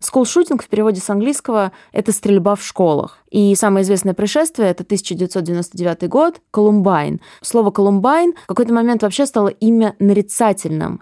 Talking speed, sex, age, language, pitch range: 145 wpm, female, 20-39, Russian, 190-250 Hz